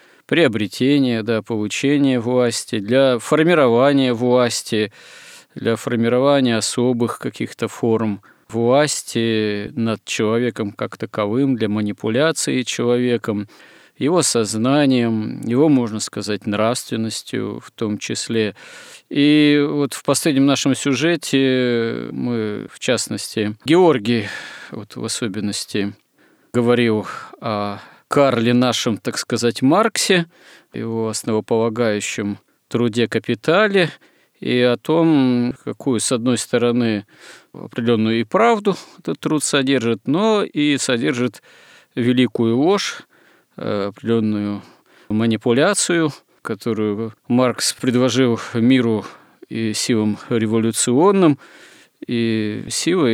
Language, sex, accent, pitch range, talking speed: Russian, male, native, 110-135 Hz, 90 wpm